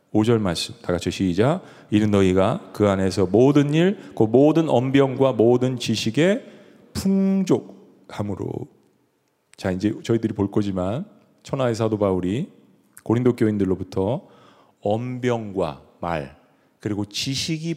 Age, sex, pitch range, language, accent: 40-59, male, 100-145 Hz, Korean, native